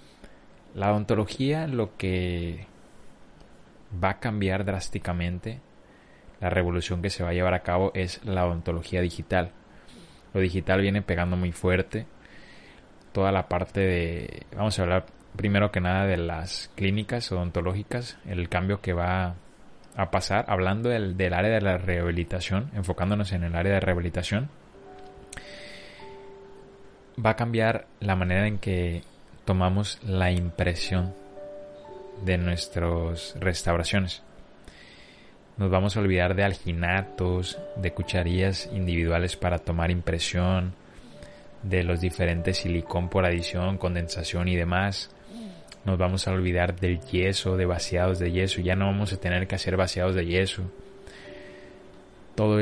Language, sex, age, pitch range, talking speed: Spanish, male, 20-39, 90-100 Hz, 130 wpm